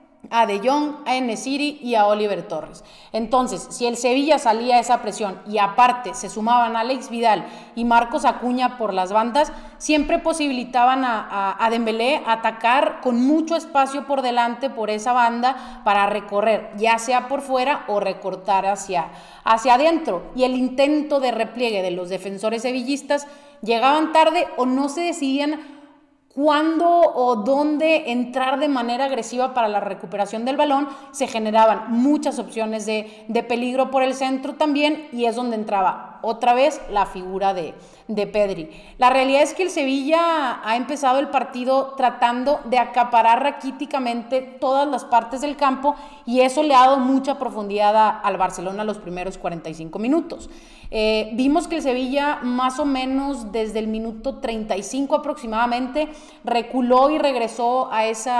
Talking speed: 155 wpm